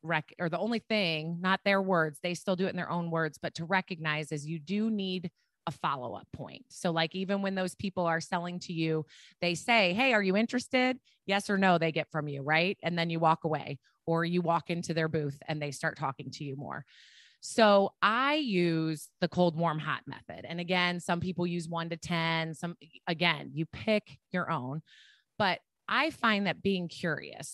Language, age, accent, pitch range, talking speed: English, 30-49, American, 165-210 Hz, 210 wpm